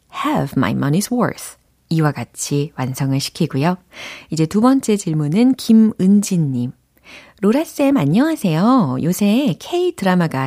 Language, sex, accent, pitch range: Korean, female, native, 145-215 Hz